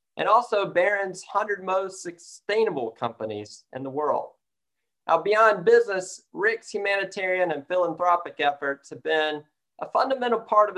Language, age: English, 40-59